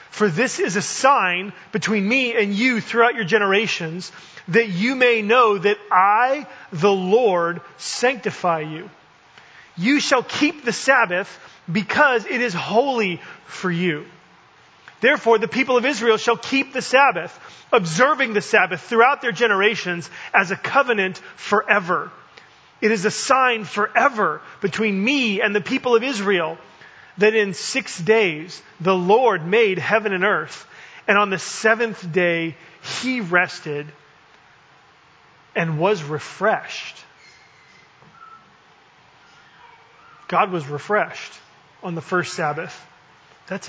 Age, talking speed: 30-49, 125 wpm